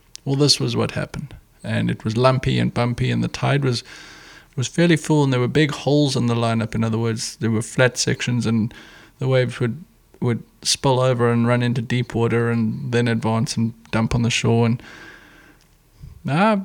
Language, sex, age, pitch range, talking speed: English, male, 20-39, 115-140 Hz, 200 wpm